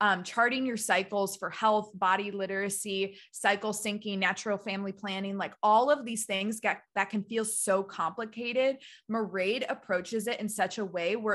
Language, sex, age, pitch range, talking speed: English, female, 20-39, 195-225 Hz, 165 wpm